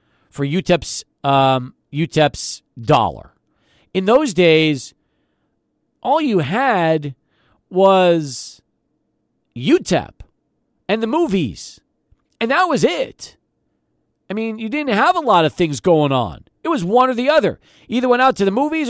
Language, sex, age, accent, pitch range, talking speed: English, male, 40-59, American, 135-195 Hz, 140 wpm